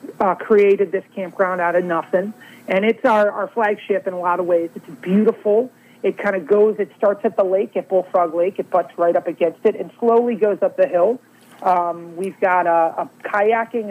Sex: male